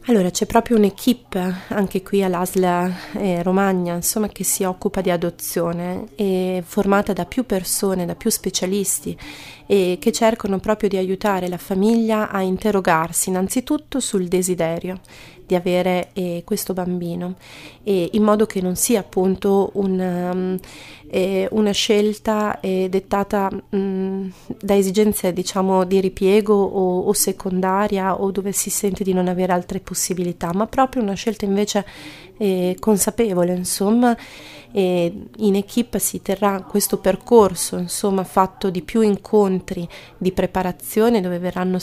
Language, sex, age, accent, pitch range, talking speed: Italian, female, 30-49, native, 180-205 Hz, 140 wpm